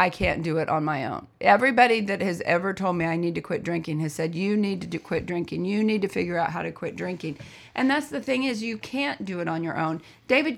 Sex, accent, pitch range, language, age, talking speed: female, American, 165-200 Hz, English, 40-59, 265 wpm